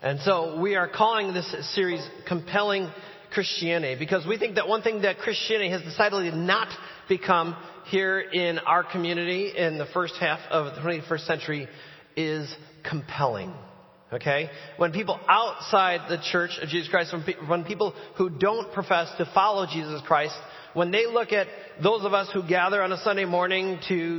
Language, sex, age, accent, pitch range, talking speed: English, male, 30-49, American, 170-205 Hz, 165 wpm